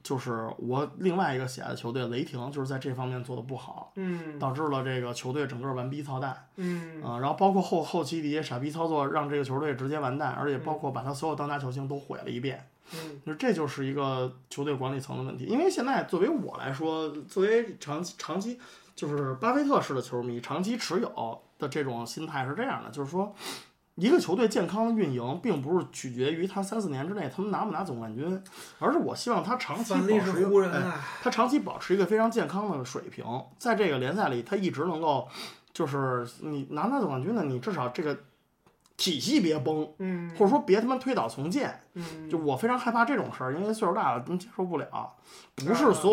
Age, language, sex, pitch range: 20-39, Chinese, male, 135-185 Hz